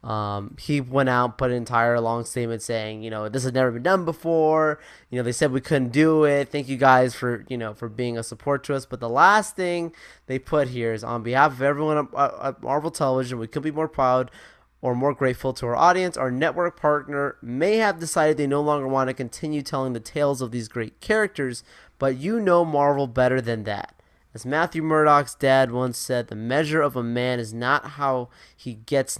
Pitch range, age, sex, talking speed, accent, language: 120-150 Hz, 20-39, male, 220 wpm, American, English